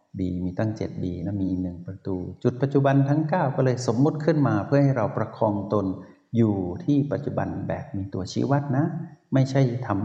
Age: 60-79